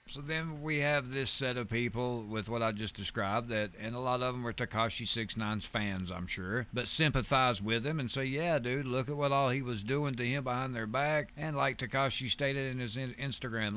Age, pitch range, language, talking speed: 50-69, 115-140 Hz, English, 225 wpm